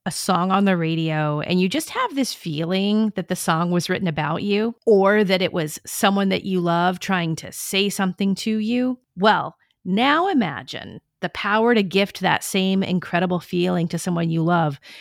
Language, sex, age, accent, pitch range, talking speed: English, female, 40-59, American, 170-205 Hz, 190 wpm